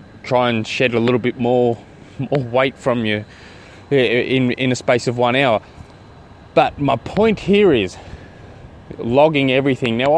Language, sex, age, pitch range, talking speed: English, male, 20-39, 115-150 Hz, 155 wpm